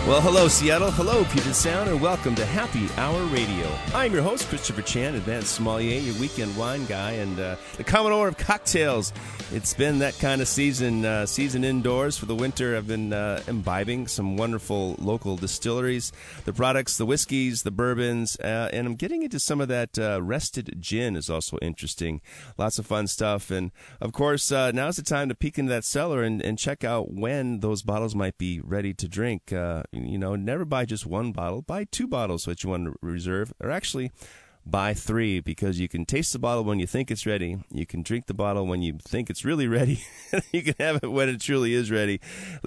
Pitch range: 100-130 Hz